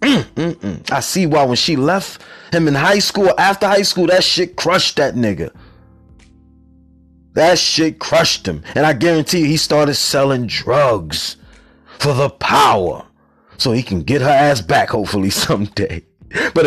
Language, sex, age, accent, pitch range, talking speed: English, male, 30-49, American, 150-210 Hz, 160 wpm